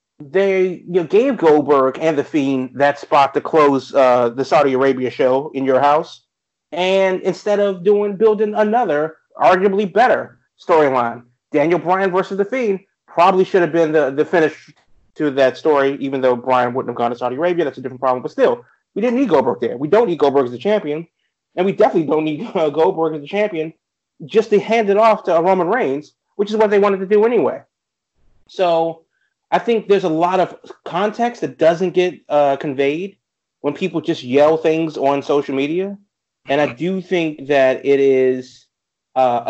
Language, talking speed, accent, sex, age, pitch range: English, 190 wpm, American, male, 30-49, 130-185 Hz